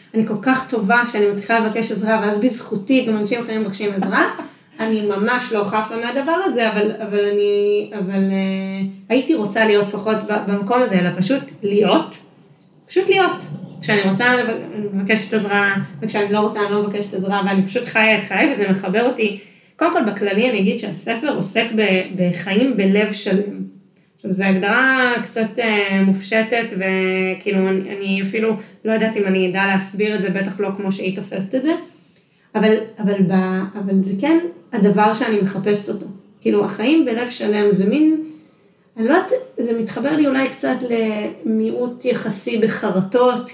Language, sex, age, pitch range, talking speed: Hebrew, female, 20-39, 195-230 Hz, 160 wpm